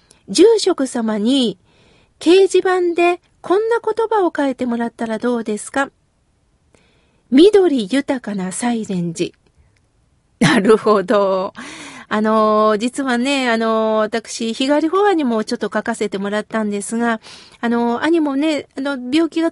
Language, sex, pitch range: Japanese, female, 225-310 Hz